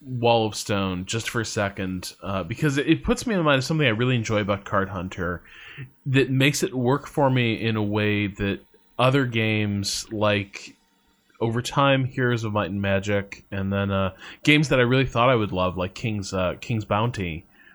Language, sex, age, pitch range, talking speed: English, male, 20-39, 100-135 Hz, 205 wpm